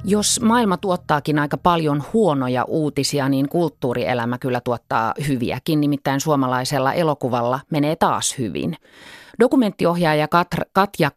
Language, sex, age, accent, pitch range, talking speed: Finnish, female, 30-49, native, 130-170 Hz, 105 wpm